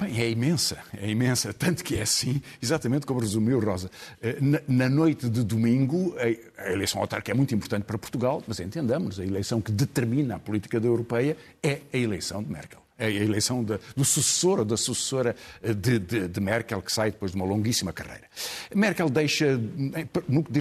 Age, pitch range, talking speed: 50-69, 105-140 Hz, 175 wpm